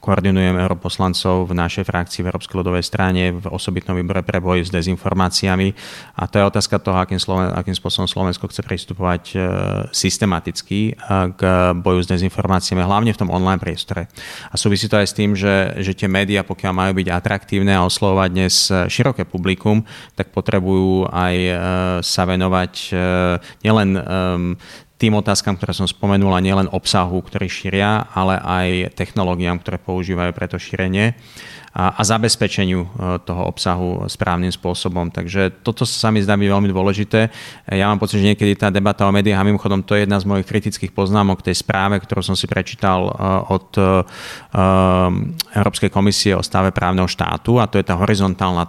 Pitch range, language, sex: 90-100 Hz, Slovak, male